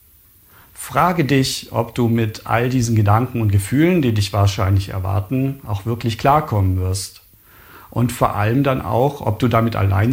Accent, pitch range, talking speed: German, 105-130 Hz, 160 wpm